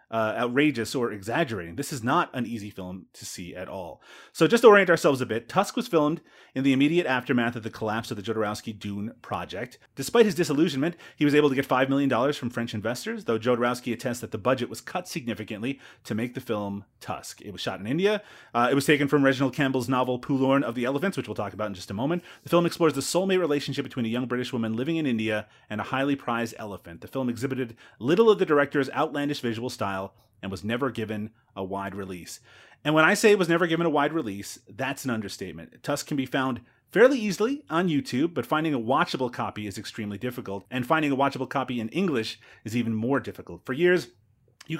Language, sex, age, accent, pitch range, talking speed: English, male, 30-49, American, 115-145 Hz, 225 wpm